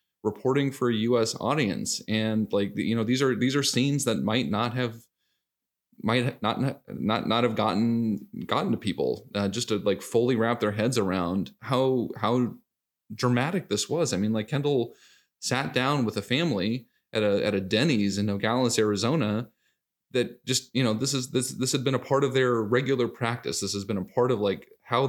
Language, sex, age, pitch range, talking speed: English, male, 20-39, 100-125 Hz, 200 wpm